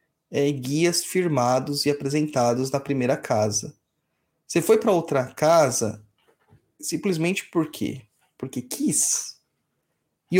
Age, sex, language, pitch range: 30-49, male, Portuguese, 145-215 Hz